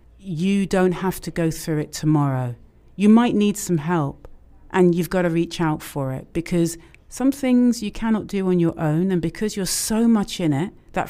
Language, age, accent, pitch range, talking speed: English, 40-59, British, 160-205 Hz, 205 wpm